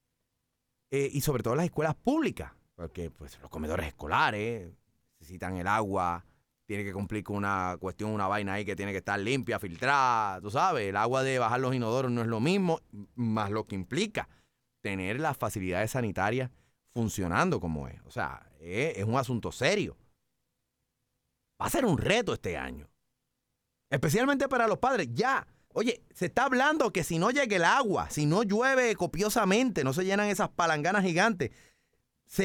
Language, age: Spanish, 30-49